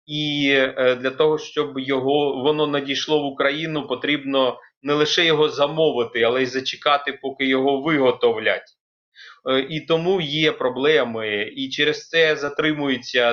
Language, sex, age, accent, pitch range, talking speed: Ukrainian, male, 30-49, native, 125-155 Hz, 125 wpm